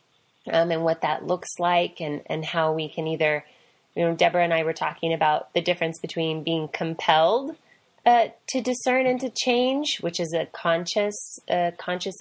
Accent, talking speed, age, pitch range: American, 180 wpm, 20-39, 160-180 Hz